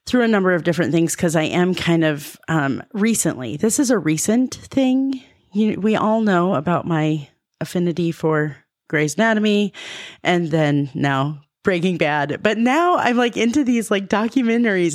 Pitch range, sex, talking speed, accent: 145-185 Hz, female, 160 wpm, American